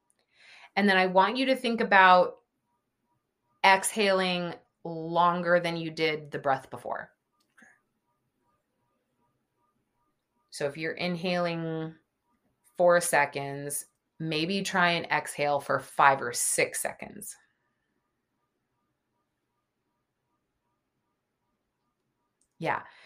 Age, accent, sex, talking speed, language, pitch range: 20-39, American, female, 85 wpm, English, 155-185 Hz